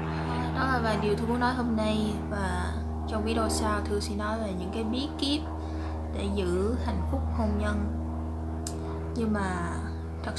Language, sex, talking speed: Vietnamese, female, 170 wpm